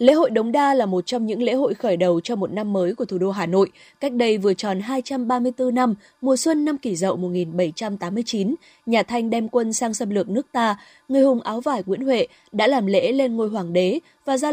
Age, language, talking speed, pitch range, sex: 20-39, Vietnamese, 235 wpm, 195-255 Hz, female